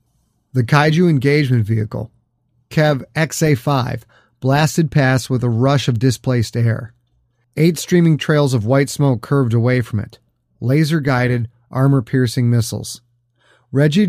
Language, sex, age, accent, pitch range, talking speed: English, male, 30-49, American, 120-160 Hz, 120 wpm